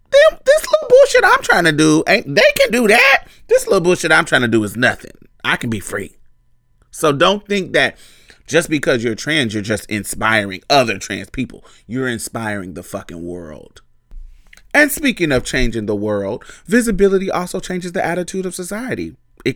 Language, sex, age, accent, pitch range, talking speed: English, male, 30-49, American, 125-200 Hz, 180 wpm